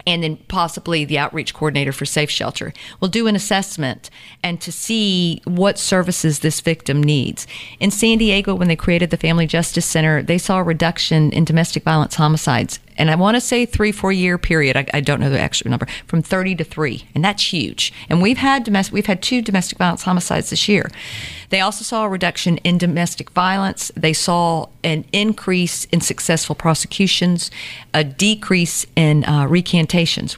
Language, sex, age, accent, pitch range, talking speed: English, female, 50-69, American, 155-195 Hz, 185 wpm